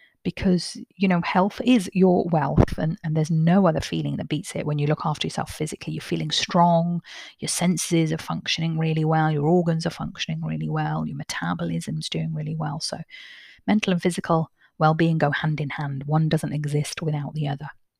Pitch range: 150-180 Hz